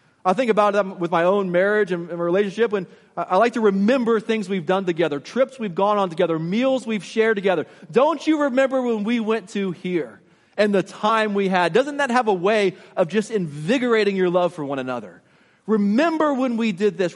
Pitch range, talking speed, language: 185-235 Hz, 205 wpm, English